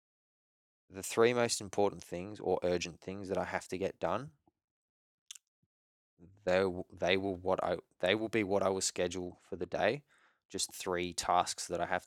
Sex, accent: male, Australian